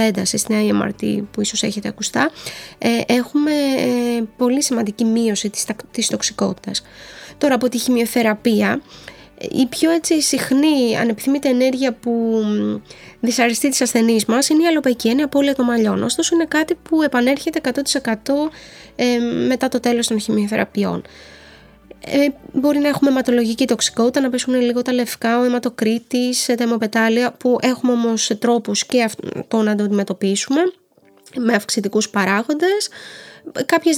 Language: Greek